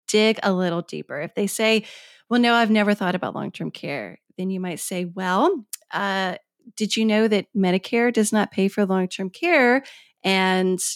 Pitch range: 190-235 Hz